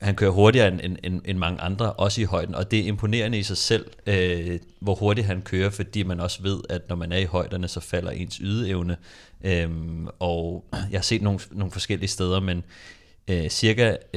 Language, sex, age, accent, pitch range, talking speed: Danish, male, 30-49, native, 90-100 Hz, 195 wpm